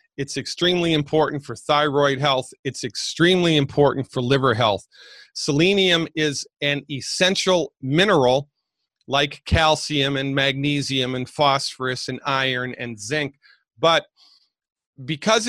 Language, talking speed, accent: English, 110 wpm, American